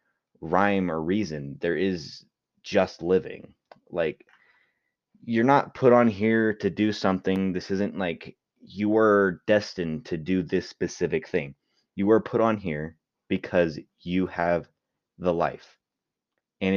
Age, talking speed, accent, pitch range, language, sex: 30-49, 135 wpm, American, 90-120 Hz, English, male